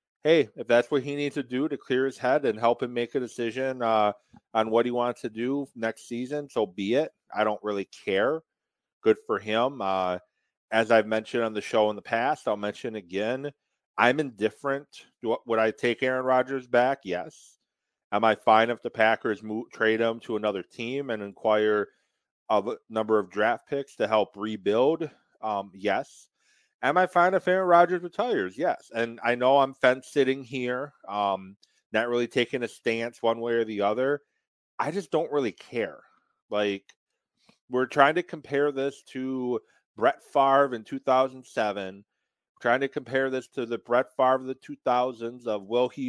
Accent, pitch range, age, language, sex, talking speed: American, 110-140 Hz, 30-49, English, male, 185 wpm